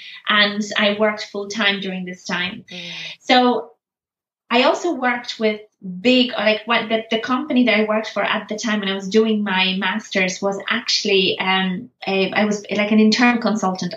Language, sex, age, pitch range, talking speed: English, female, 20-39, 205-235 Hz, 180 wpm